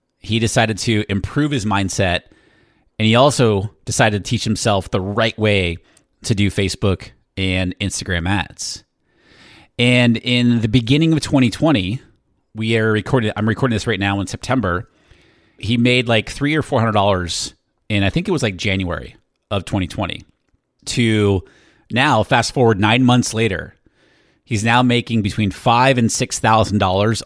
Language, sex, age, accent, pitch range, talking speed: English, male, 30-49, American, 100-125 Hz, 160 wpm